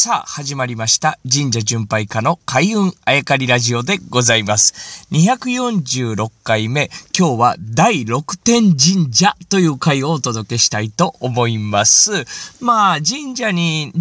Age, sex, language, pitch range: 20-39, male, Japanese, 115-180 Hz